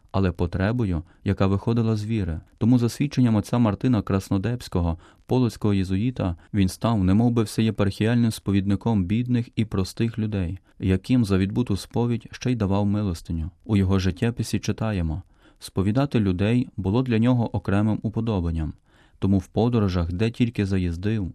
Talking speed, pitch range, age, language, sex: 140 wpm, 95-115 Hz, 30-49, Ukrainian, male